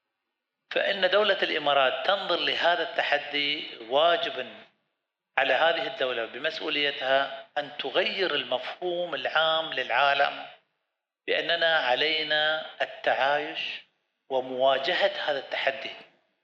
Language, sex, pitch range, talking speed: Arabic, male, 135-175 Hz, 80 wpm